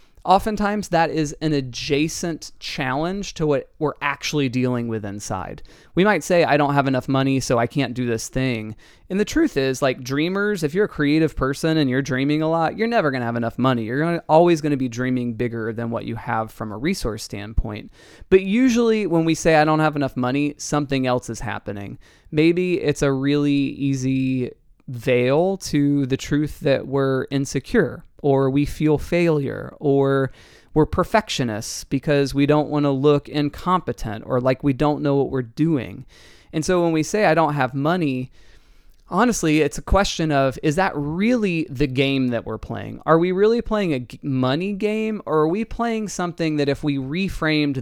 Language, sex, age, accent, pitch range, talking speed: English, male, 20-39, American, 130-165 Hz, 190 wpm